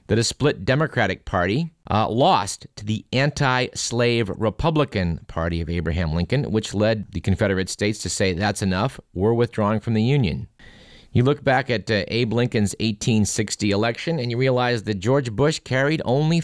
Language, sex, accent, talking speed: English, male, American, 170 wpm